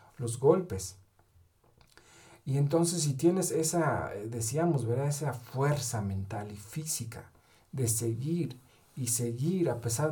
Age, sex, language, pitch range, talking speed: 50-69, male, English, 115-155 Hz, 120 wpm